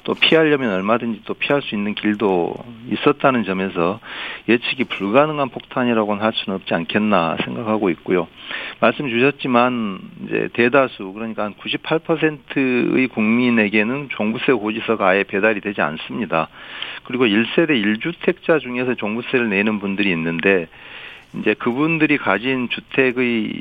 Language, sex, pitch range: Korean, male, 100-140 Hz